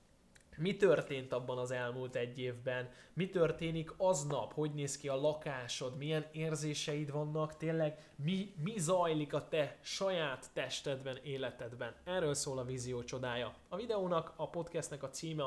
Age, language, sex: 10-29, Hungarian, male